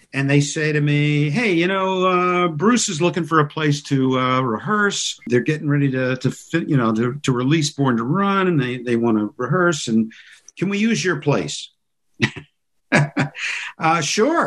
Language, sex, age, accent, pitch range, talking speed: English, male, 50-69, American, 125-175 Hz, 190 wpm